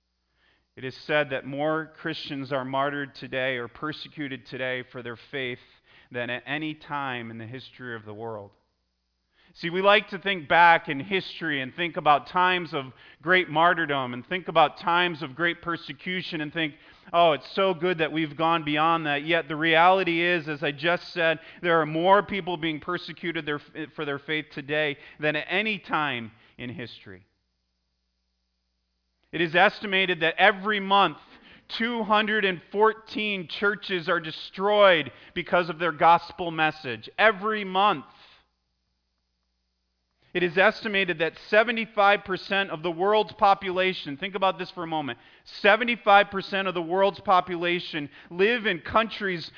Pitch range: 130-185 Hz